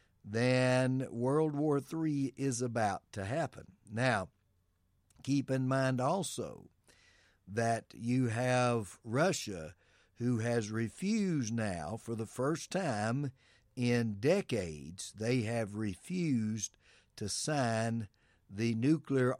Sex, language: male, English